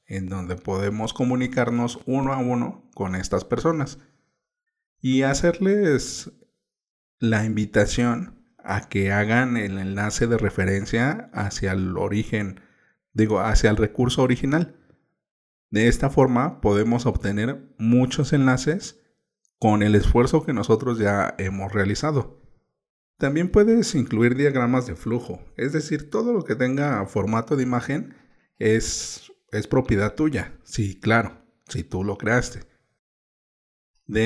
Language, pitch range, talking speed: Spanish, 105-135 Hz, 125 wpm